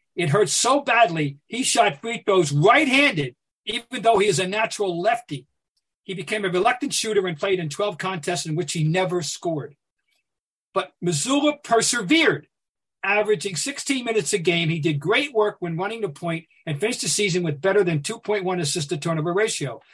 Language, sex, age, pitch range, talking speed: English, male, 50-69, 165-220 Hz, 180 wpm